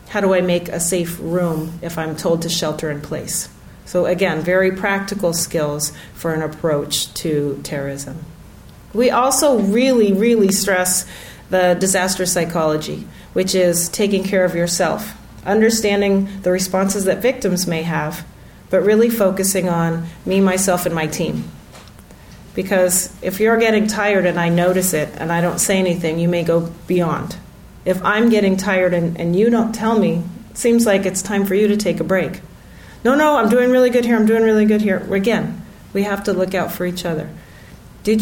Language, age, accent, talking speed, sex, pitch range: English, 40-59, American, 180 wpm, female, 170-215 Hz